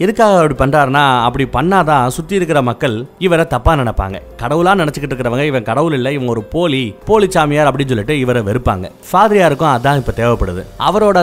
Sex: male